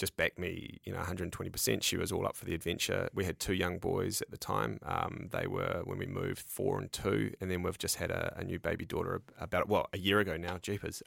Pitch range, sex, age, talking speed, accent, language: 85-100 Hz, male, 20-39, 260 wpm, Australian, English